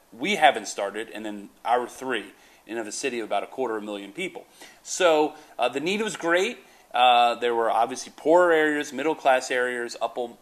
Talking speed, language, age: 190 wpm, English, 40-59